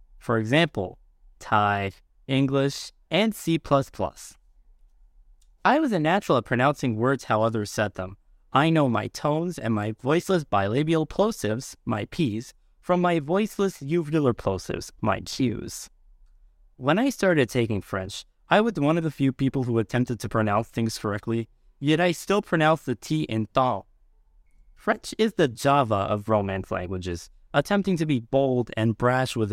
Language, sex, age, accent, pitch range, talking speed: English, male, 20-39, American, 110-155 Hz, 150 wpm